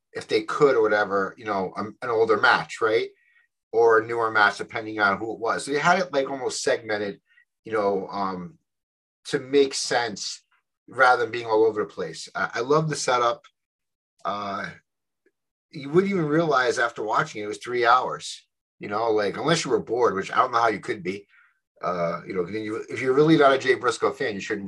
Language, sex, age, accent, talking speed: English, male, 30-49, American, 205 wpm